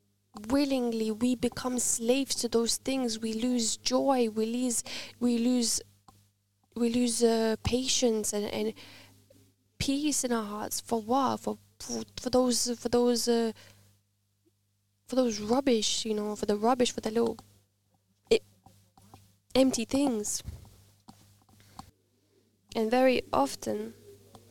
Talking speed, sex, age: 120 wpm, female, 10-29